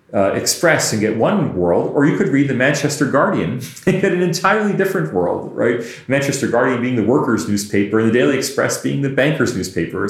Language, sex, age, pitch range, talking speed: English, male, 40-59, 110-155 Hz, 210 wpm